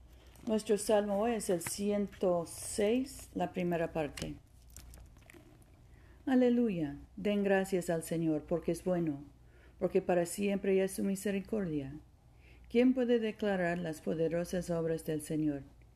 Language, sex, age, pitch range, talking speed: Spanish, female, 50-69, 155-190 Hz, 115 wpm